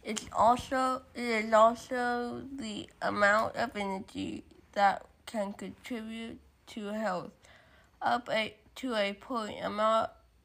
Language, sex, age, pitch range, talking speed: English, female, 20-39, 205-235 Hz, 115 wpm